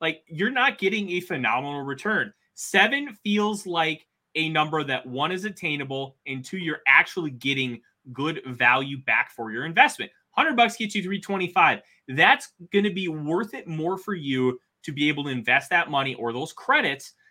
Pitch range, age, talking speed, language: 130-175 Hz, 20-39, 175 wpm, English